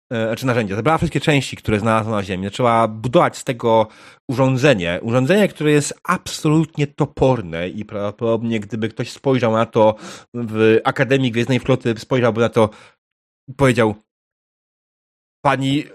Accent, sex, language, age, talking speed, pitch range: native, male, Polish, 30-49, 135 wpm, 110-140 Hz